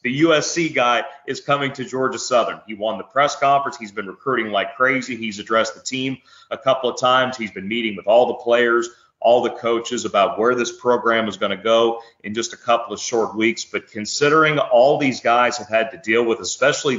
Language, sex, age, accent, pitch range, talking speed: English, male, 30-49, American, 115-130 Hz, 220 wpm